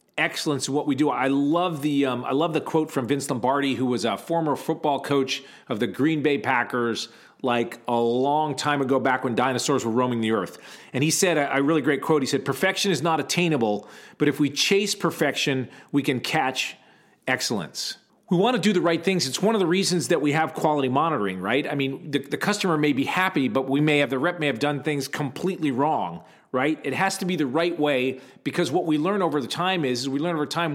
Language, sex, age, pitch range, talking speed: English, male, 40-59, 135-170 Hz, 235 wpm